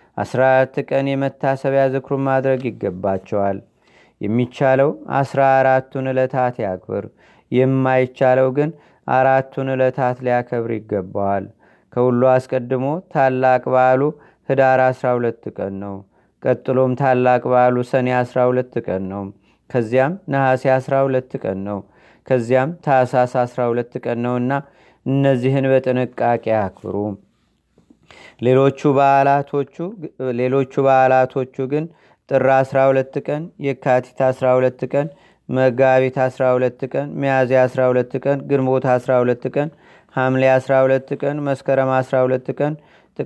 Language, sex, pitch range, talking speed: Amharic, male, 125-135 Hz, 90 wpm